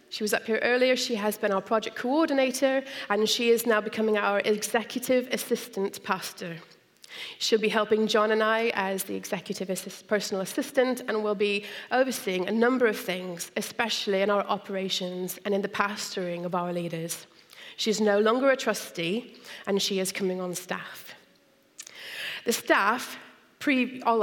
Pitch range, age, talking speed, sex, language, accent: 185-230 Hz, 30-49, 165 wpm, female, English, British